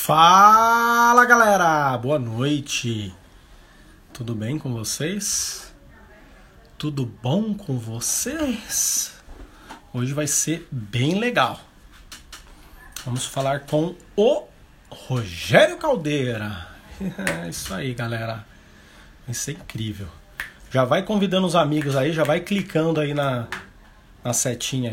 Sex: male